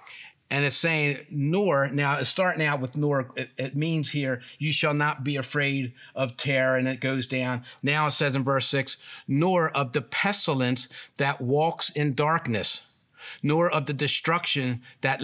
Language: English